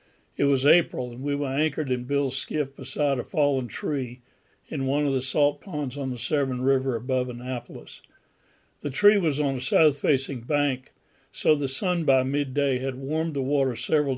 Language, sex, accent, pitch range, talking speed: English, male, American, 130-150 Hz, 180 wpm